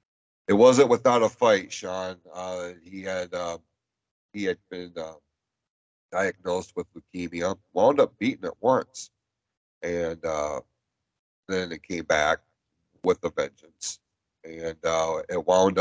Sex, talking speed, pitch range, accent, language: male, 135 wpm, 85-110 Hz, American, English